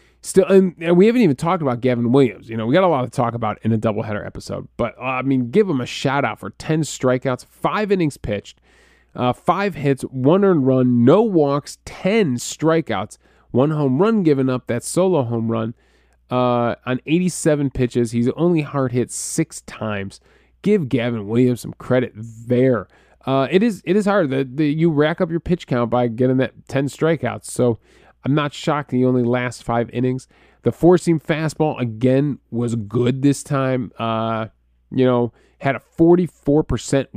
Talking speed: 180 wpm